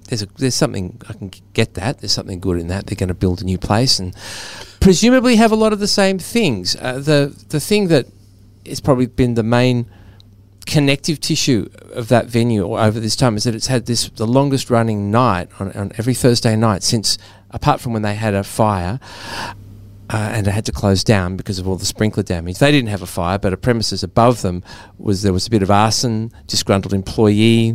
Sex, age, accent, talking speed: male, 40-59, Australian, 220 wpm